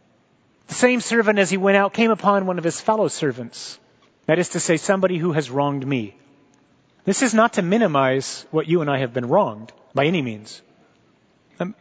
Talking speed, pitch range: 200 wpm, 135-175 Hz